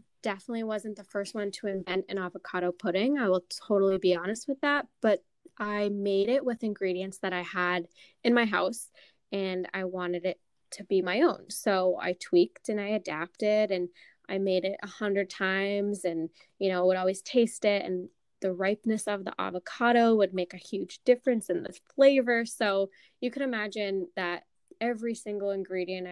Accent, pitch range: American, 185-235 Hz